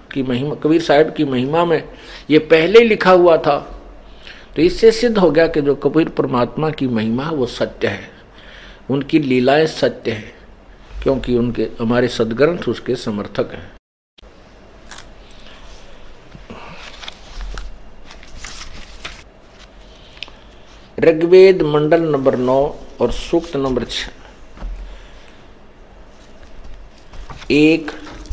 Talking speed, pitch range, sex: 90 wpm, 125-160 Hz, male